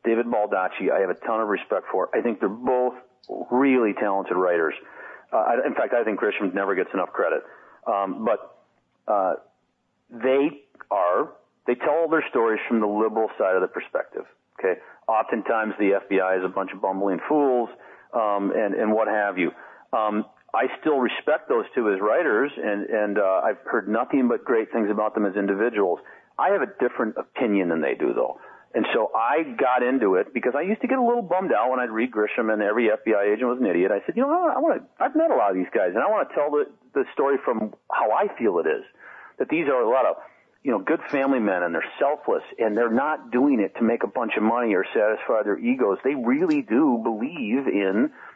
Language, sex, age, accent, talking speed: English, male, 40-59, American, 220 wpm